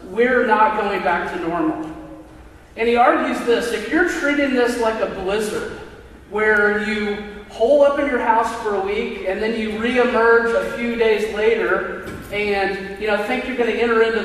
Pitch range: 190-235 Hz